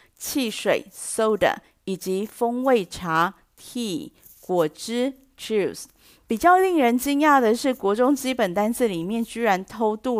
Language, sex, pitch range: Chinese, female, 190-255 Hz